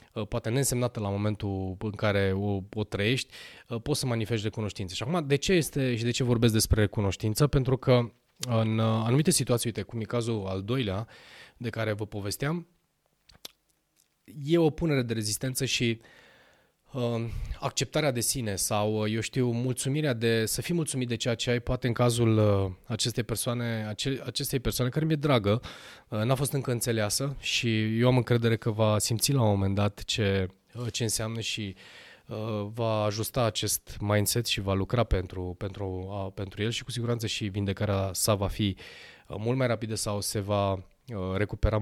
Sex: male